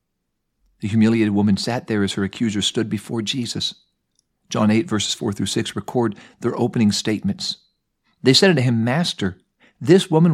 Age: 50-69